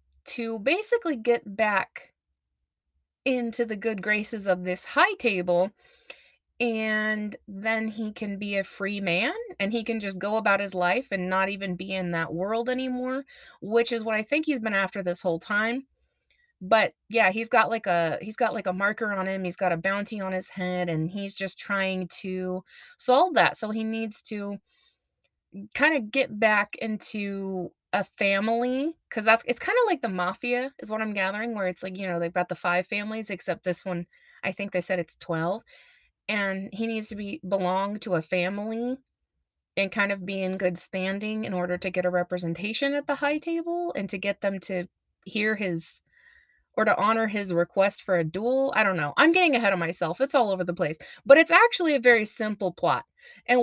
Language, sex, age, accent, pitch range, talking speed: English, female, 20-39, American, 185-240 Hz, 200 wpm